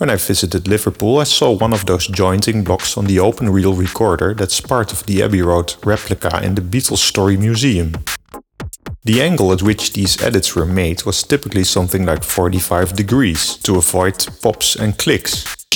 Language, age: English, 40-59